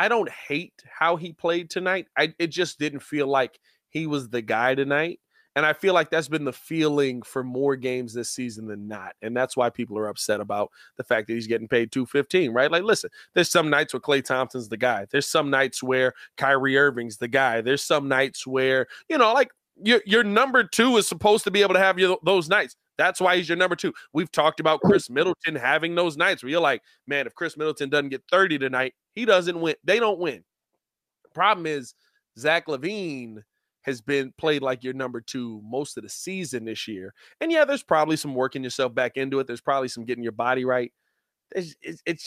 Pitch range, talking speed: 130-170 Hz, 215 wpm